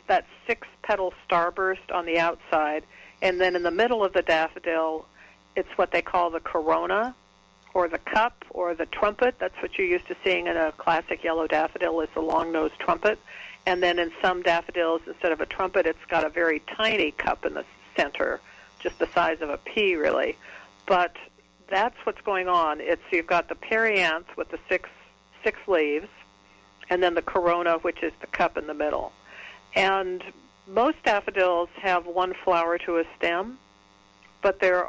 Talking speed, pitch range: 180 wpm, 160-185 Hz